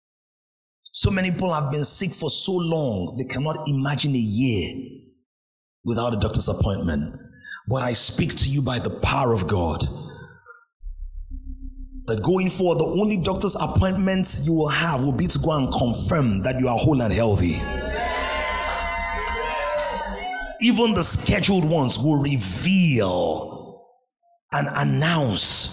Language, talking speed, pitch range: English, 135 wpm, 110-175 Hz